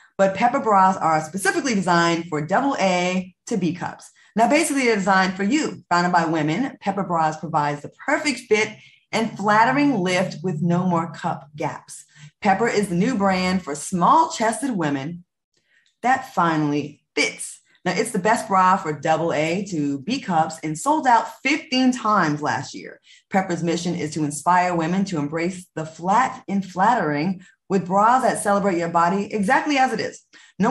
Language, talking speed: English, 170 wpm